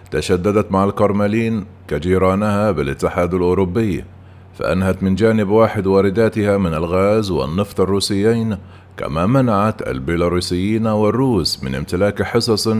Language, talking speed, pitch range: Arabic, 105 wpm, 95-105 Hz